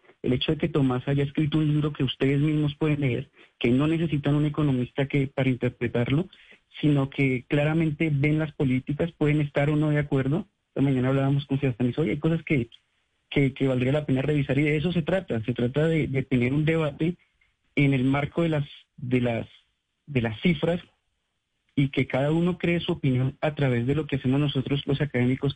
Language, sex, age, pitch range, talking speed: Spanish, male, 40-59, 130-160 Hz, 205 wpm